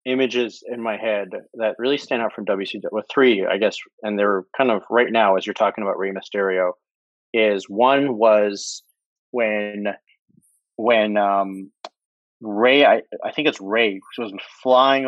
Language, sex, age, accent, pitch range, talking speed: English, male, 30-49, American, 105-130 Hz, 165 wpm